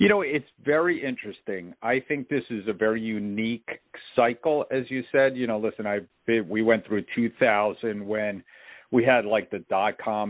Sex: male